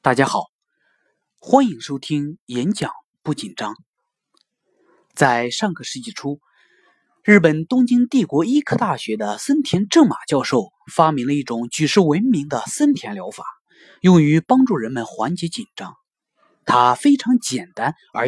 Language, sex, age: Chinese, male, 30-49